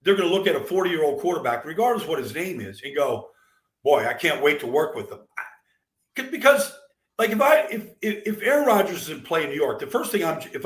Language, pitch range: English, 155-250 Hz